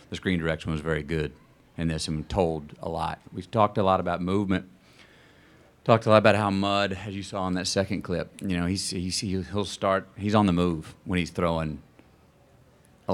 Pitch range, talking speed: 85-105 Hz, 195 wpm